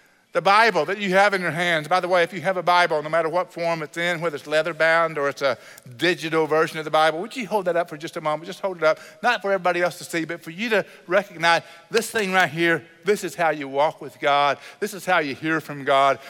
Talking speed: 275 wpm